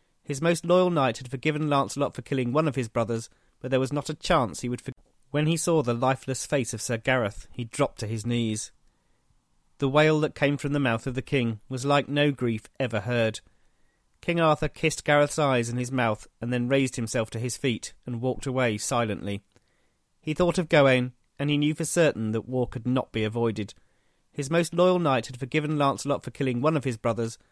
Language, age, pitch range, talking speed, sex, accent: English, 40-59, 115-150 Hz, 215 wpm, male, British